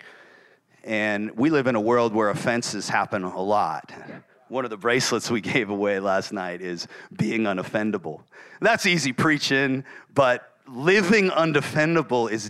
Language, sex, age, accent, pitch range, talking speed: English, male, 40-59, American, 105-145 Hz, 145 wpm